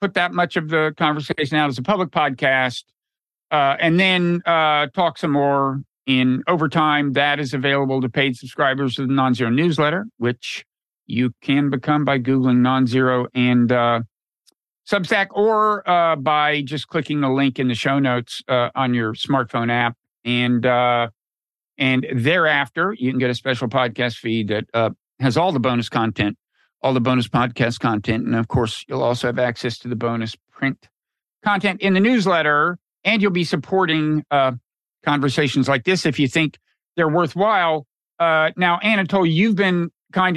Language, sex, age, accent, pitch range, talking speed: English, male, 50-69, American, 130-165 Hz, 170 wpm